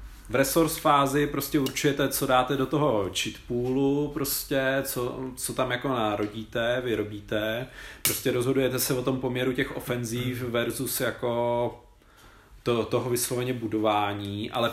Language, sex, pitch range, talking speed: Czech, male, 115-155 Hz, 135 wpm